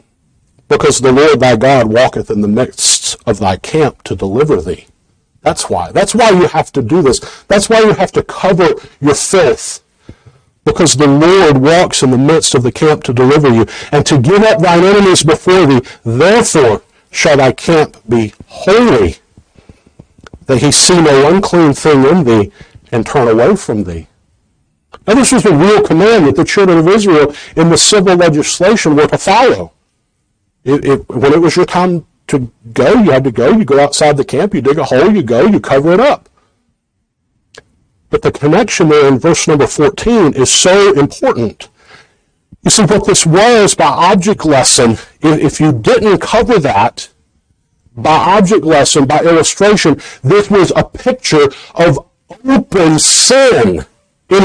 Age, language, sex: 50-69, English, male